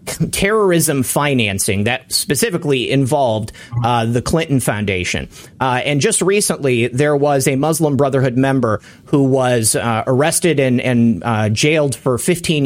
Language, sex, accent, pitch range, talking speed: English, male, American, 125-160 Hz, 135 wpm